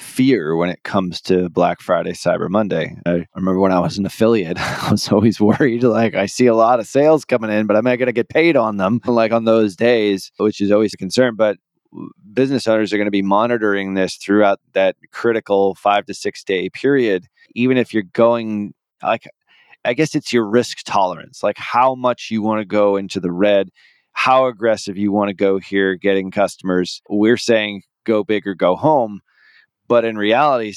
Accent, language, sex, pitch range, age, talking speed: American, English, male, 100-125 Hz, 20-39, 205 wpm